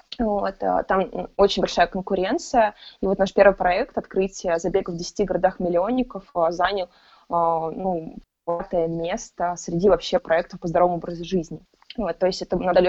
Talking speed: 145 wpm